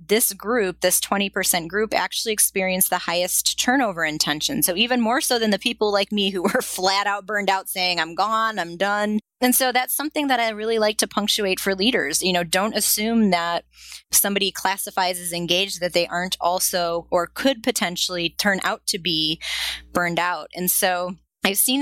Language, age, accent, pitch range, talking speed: English, 20-39, American, 175-220 Hz, 190 wpm